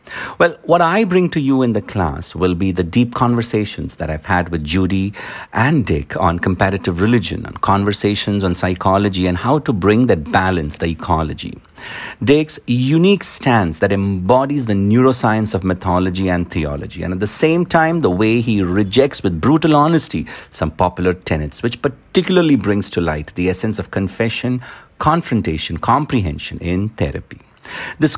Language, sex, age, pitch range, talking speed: English, male, 60-79, 90-130 Hz, 160 wpm